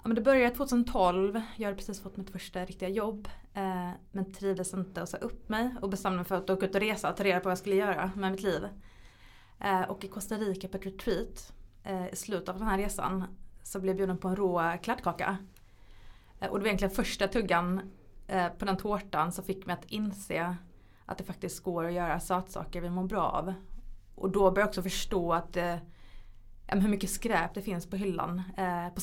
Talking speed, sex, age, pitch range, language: 220 wpm, female, 20-39, 170-195 Hz, English